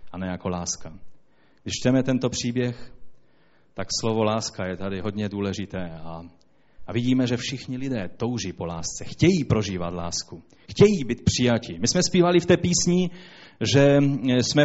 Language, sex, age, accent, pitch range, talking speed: Czech, male, 30-49, native, 115-170 Hz, 155 wpm